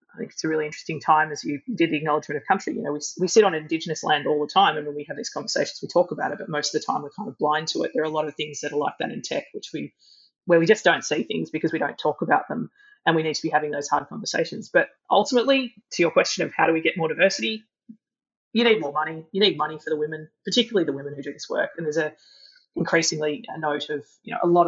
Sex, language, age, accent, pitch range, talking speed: female, English, 20-39, Australian, 150-195 Hz, 295 wpm